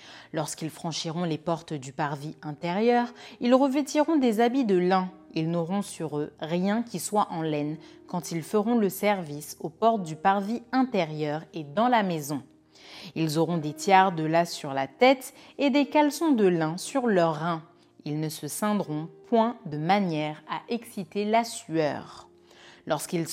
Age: 30-49